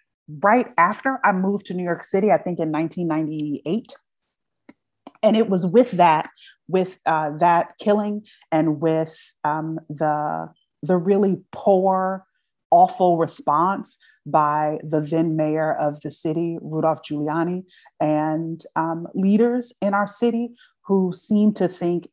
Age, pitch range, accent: 30-49, 160-200 Hz, American